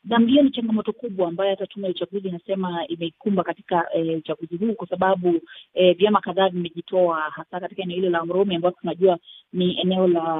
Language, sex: Swahili, female